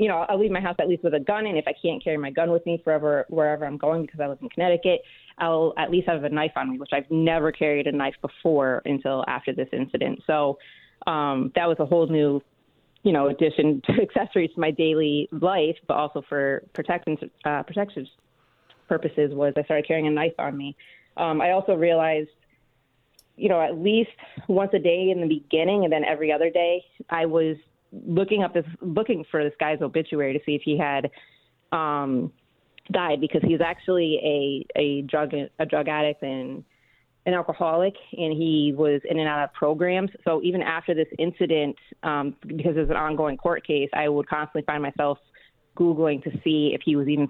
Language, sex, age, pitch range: English, female, 30-49, 145-170 Hz